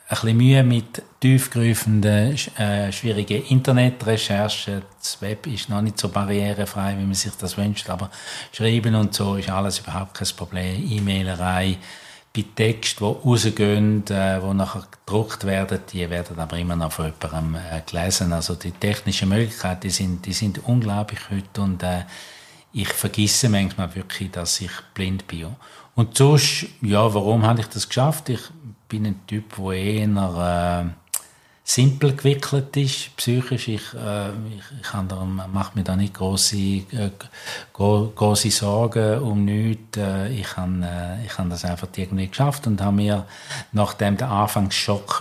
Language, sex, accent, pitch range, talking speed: German, male, Austrian, 95-110 Hz, 155 wpm